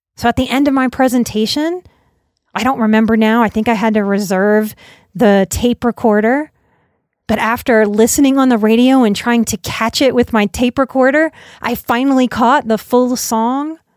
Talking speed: 175 wpm